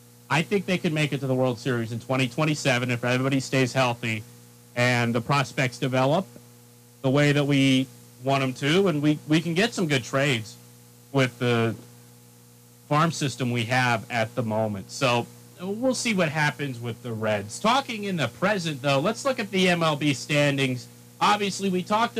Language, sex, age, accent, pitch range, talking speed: English, male, 40-59, American, 120-150 Hz, 180 wpm